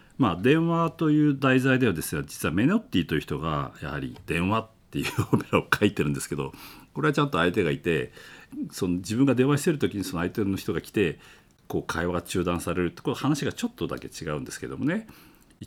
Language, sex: Japanese, male